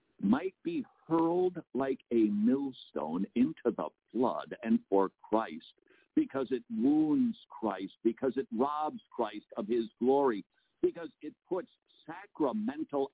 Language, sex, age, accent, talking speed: English, male, 60-79, American, 125 wpm